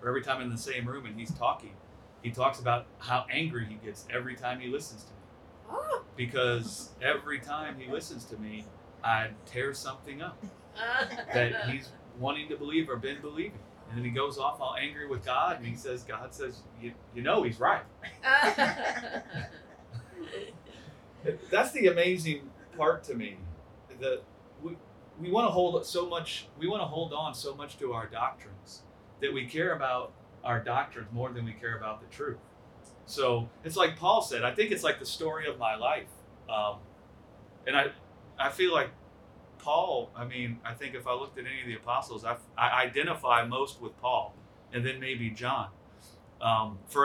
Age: 30-49